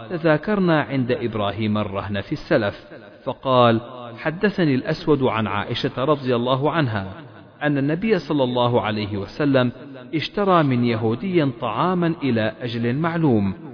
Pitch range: 110-155 Hz